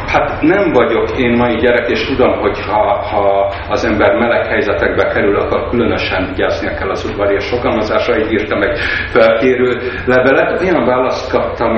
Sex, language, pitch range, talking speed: male, Hungarian, 100-125 Hz, 165 wpm